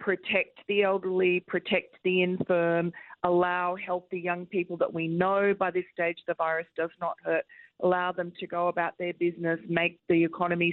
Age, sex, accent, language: 40-59, female, Australian, English